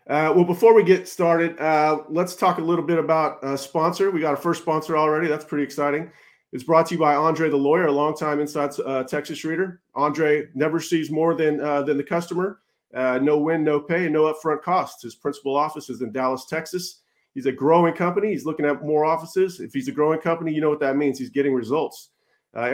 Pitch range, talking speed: 145-170 Hz, 225 wpm